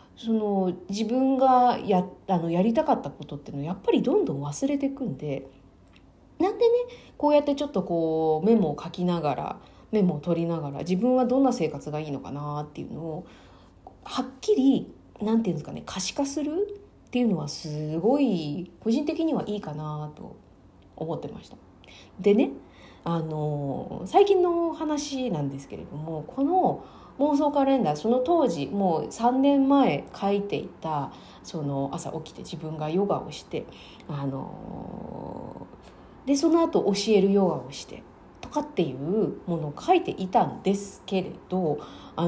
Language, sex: Japanese, female